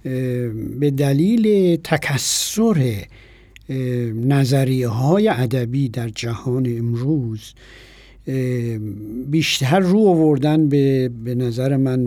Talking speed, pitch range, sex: 75 wpm, 120-155 Hz, male